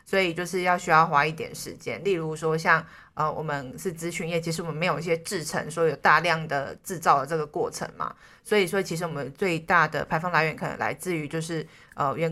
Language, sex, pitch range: Chinese, female, 160-185 Hz